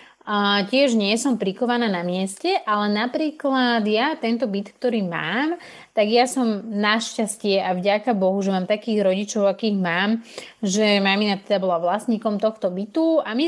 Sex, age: female, 30-49